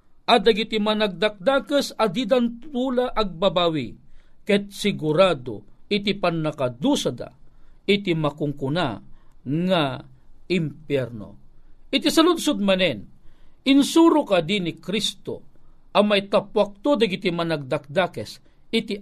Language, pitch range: Filipino, 145-215 Hz